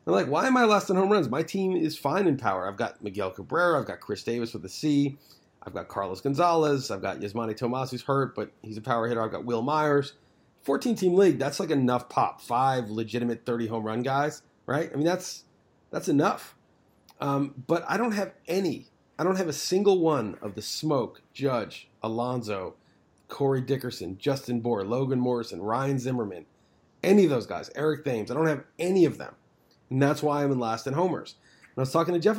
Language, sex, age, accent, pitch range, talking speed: English, male, 30-49, American, 120-165 Hz, 210 wpm